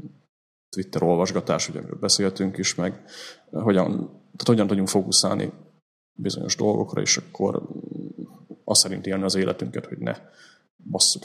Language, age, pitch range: Hungarian, 30-49, 90-105 Hz